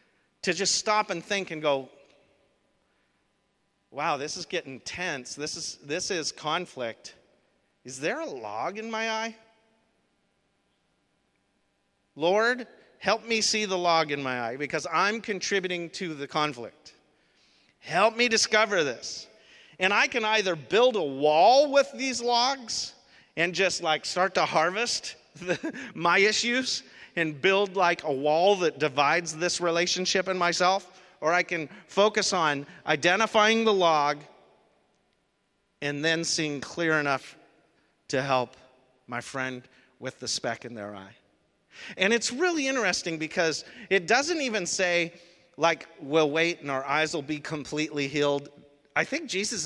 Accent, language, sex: American, English, male